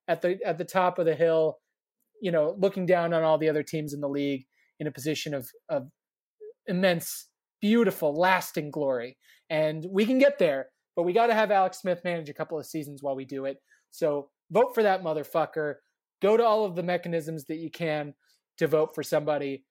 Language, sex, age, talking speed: English, male, 30-49, 205 wpm